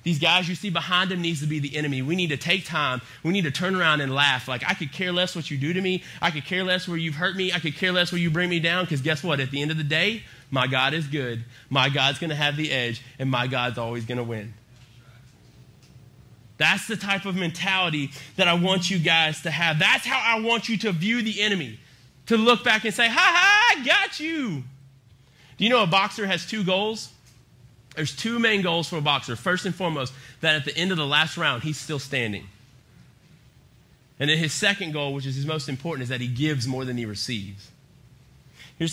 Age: 30-49